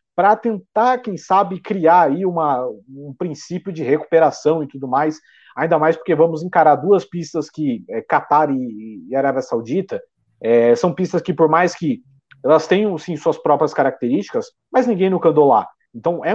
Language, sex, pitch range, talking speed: Portuguese, male, 145-195 Hz, 165 wpm